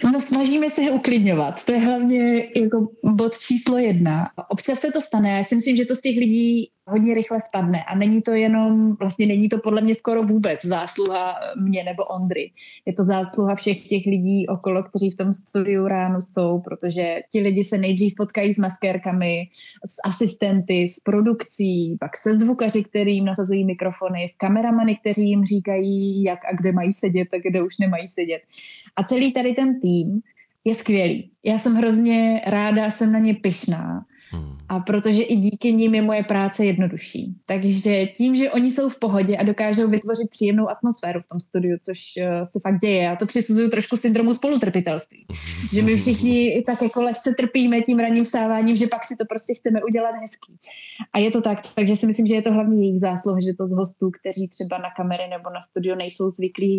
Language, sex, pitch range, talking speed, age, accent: Czech, female, 185-230 Hz, 190 wpm, 20-39, native